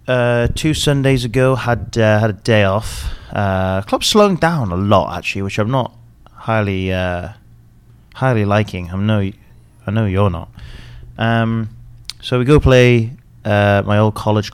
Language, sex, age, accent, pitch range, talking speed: English, male, 30-49, British, 95-120 Hz, 165 wpm